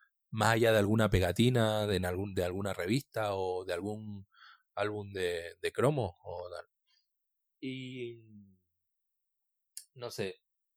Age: 30-49